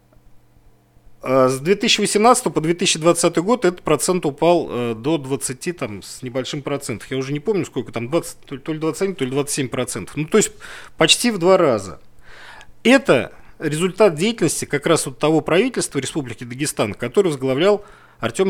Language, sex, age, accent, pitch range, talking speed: Russian, male, 40-59, native, 125-175 Hz, 155 wpm